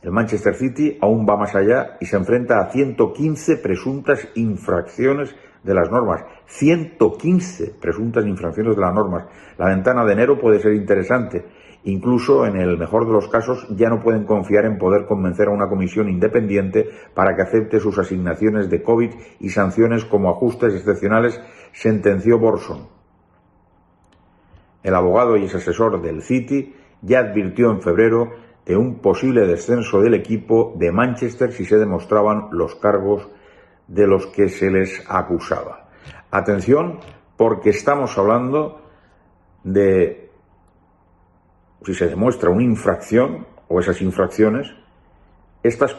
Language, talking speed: Spanish, 135 wpm